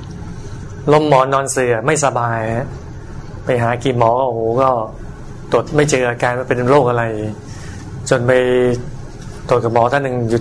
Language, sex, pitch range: Thai, male, 110-135 Hz